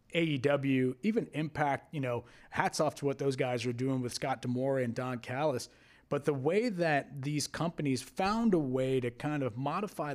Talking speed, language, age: 190 wpm, English, 30-49